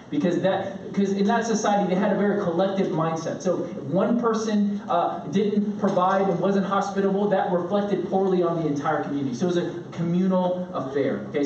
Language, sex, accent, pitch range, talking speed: English, male, American, 195-265 Hz, 180 wpm